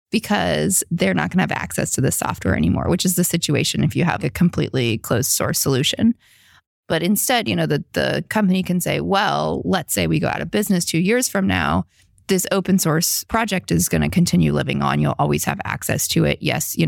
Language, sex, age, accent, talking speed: English, female, 20-39, American, 220 wpm